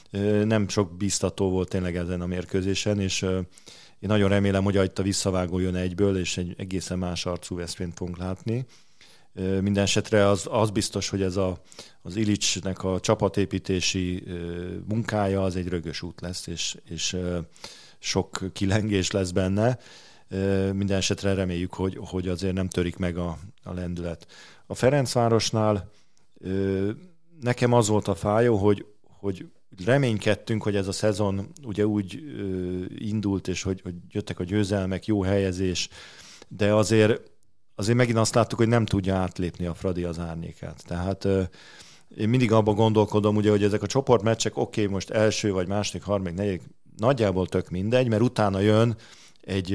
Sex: male